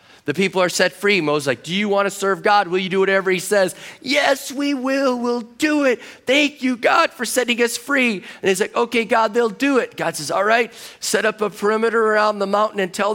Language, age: English, 30-49